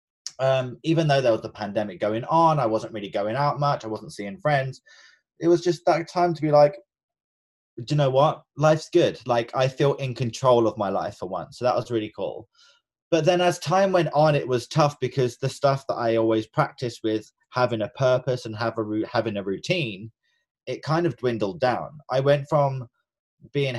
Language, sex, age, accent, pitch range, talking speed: English, male, 20-39, British, 115-145 Hz, 210 wpm